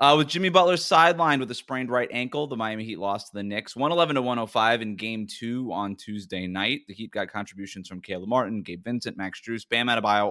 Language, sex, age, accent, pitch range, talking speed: English, male, 20-39, American, 105-145 Hz, 215 wpm